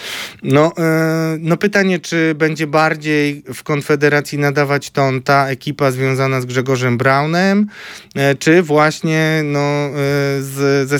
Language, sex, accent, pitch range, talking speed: Polish, male, native, 125-150 Hz, 105 wpm